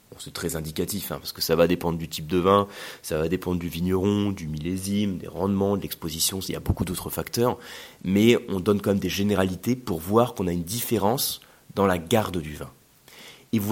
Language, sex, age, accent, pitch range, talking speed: French, male, 30-49, French, 90-135 Hz, 220 wpm